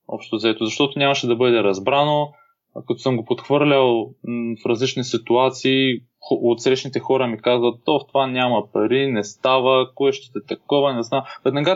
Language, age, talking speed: Bulgarian, 20-39, 155 wpm